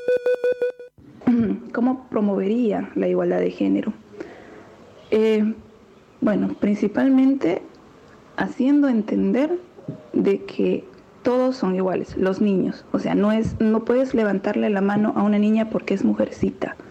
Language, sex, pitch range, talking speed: Spanish, female, 185-250 Hz, 115 wpm